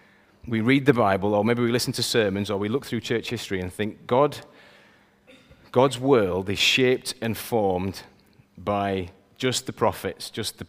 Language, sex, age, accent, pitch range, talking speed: English, male, 30-49, British, 100-125 Hz, 175 wpm